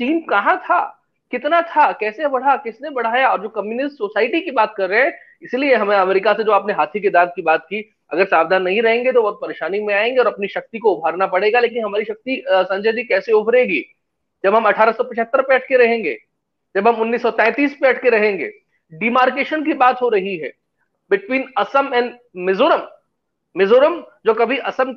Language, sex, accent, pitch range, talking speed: English, male, Indian, 215-295 Hz, 125 wpm